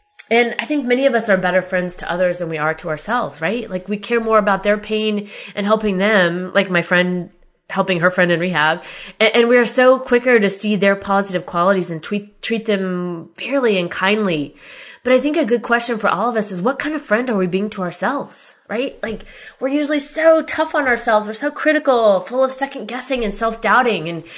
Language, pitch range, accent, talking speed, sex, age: English, 180-240 Hz, American, 220 wpm, female, 20-39